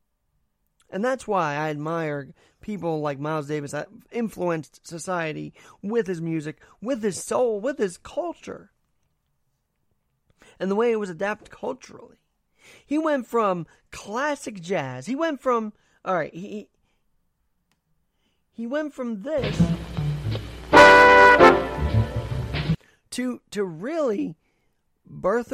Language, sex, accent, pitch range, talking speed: English, male, American, 165-230 Hz, 110 wpm